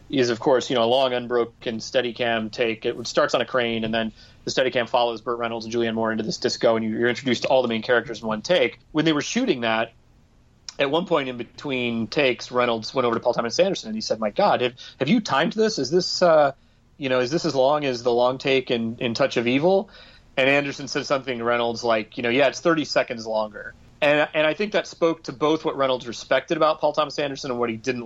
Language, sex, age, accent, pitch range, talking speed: English, male, 30-49, American, 115-150 Hz, 255 wpm